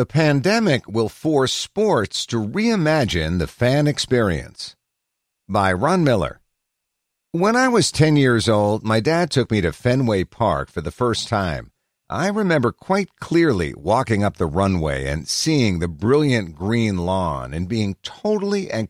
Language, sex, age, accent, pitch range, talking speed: English, male, 50-69, American, 90-145 Hz, 150 wpm